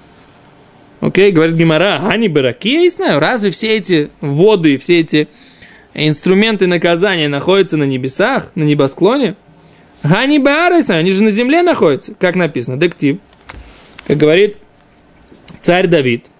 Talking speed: 150 wpm